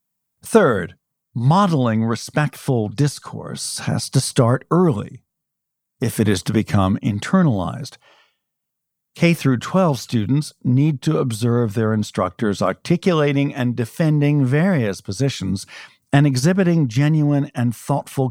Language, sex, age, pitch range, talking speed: English, male, 60-79, 110-145 Hz, 100 wpm